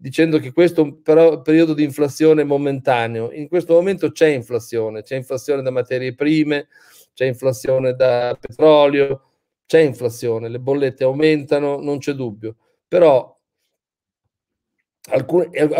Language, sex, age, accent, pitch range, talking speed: Italian, male, 50-69, native, 130-160 Hz, 130 wpm